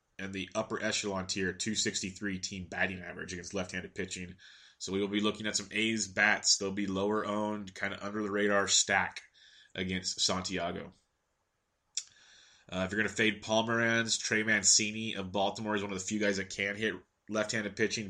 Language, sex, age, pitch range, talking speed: English, male, 20-39, 95-110 Hz, 170 wpm